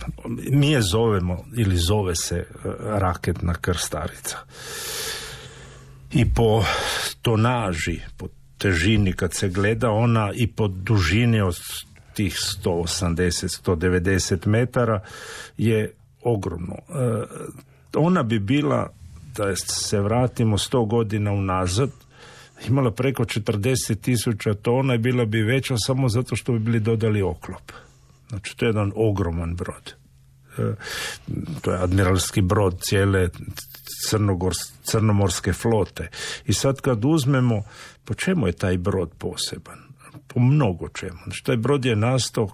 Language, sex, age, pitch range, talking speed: Croatian, male, 50-69, 95-120 Hz, 115 wpm